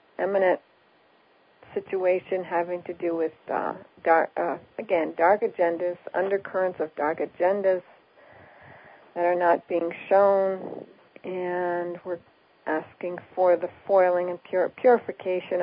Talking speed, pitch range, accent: 110 wpm, 175-190 Hz, American